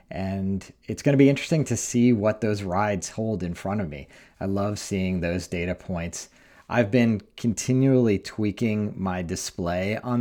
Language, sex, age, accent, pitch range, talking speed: English, male, 40-59, American, 95-120 Hz, 170 wpm